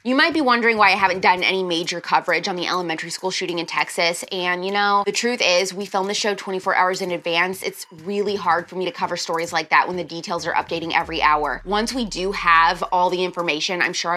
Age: 20-39